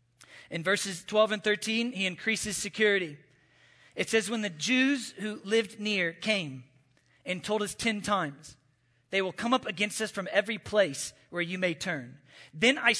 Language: English